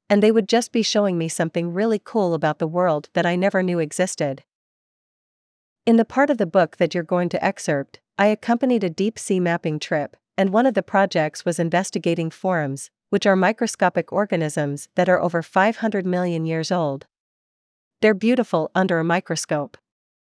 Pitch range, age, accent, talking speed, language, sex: 160-205 Hz, 50-69, American, 180 wpm, English, female